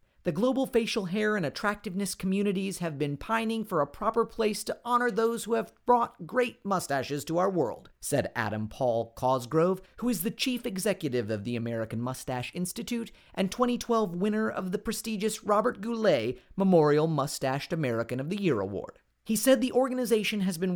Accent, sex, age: American, male, 40-59